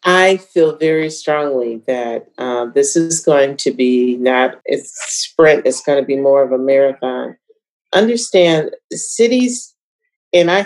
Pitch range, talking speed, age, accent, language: 150-190 Hz, 145 wpm, 40-59, American, English